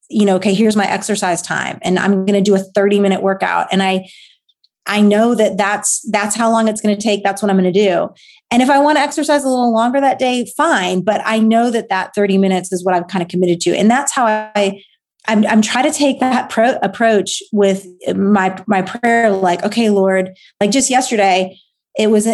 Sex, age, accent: female, 30-49, American